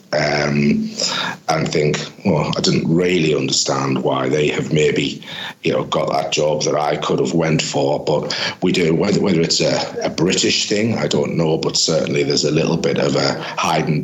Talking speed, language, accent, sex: 190 wpm, English, British, male